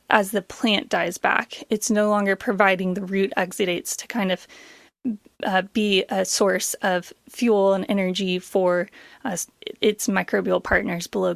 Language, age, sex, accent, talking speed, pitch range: English, 20-39, female, American, 155 wpm, 190-235 Hz